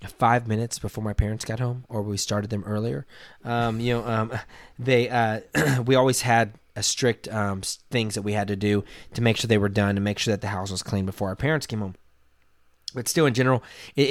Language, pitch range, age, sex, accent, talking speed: English, 105-160 Hz, 20-39, male, American, 230 wpm